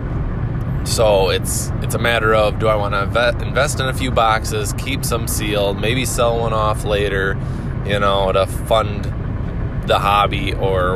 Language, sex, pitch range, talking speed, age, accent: English, male, 100-125 Hz, 165 wpm, 20-39, American